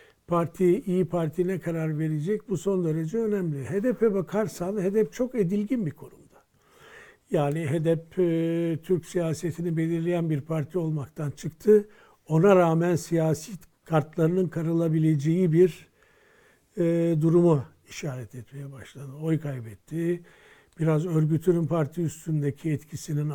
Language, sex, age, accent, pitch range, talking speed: Turkish, male, 60-79, native, 150-195 Hz, 110 wpm